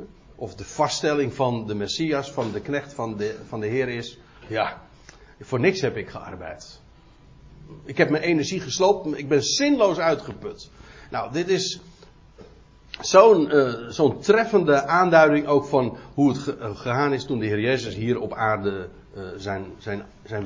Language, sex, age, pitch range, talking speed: Dutch, male, 60-79, 110-155 Hz, 165 wpm